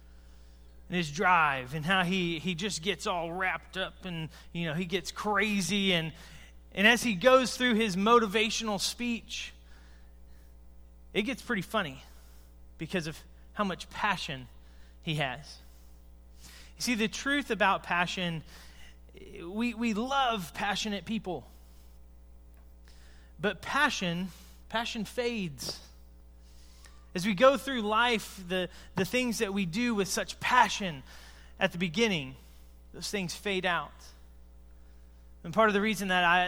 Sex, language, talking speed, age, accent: male, English, 130 wpm, 30-49, American